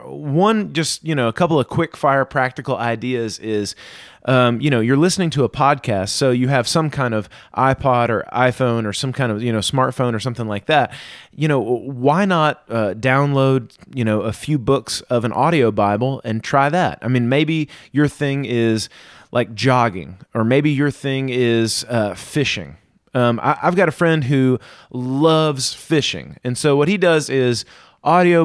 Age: 30-49